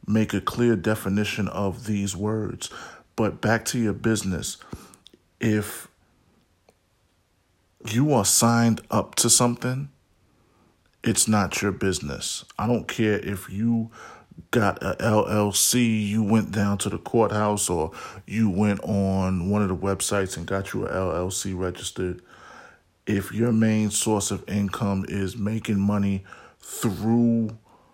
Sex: male